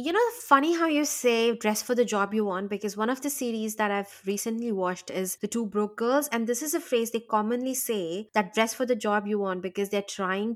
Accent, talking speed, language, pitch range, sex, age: Indian, 250 wpm, English, 195-240 Hz, female, 20-39